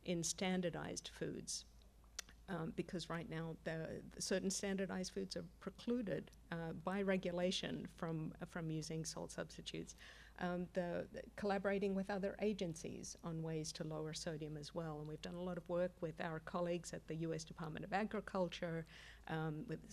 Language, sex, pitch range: English, female, 160-190 Hz